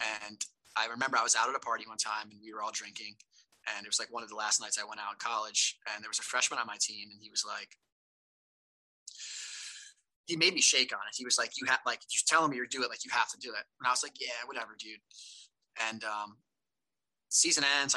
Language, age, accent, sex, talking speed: English, 20-39, American, male, 255 wpm